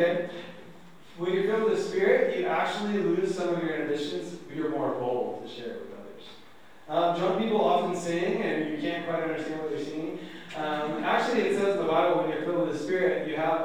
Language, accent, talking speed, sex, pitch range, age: English, American, 215 wpm, male, 145-185 Hz, 30-49